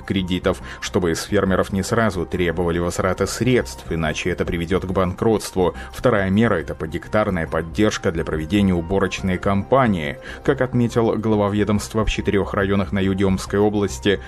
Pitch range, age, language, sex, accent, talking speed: 90-105 Hz, 30-49, Russian, male, native, 145 wpm